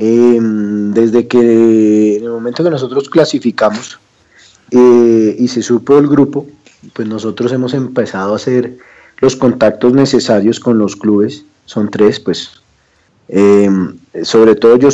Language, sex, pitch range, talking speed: Spanish, male, 105-130 Hz, 135 wpm